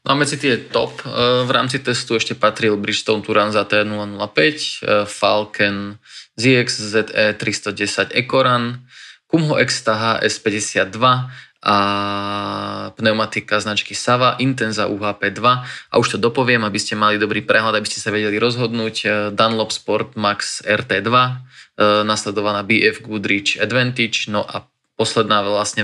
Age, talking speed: 20-39, 120 wpm